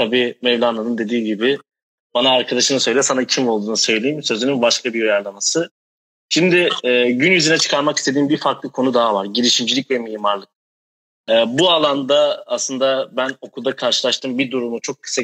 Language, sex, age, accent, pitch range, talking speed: Turkish, male, 30-49, native, 120-140 Hz, 150 wpm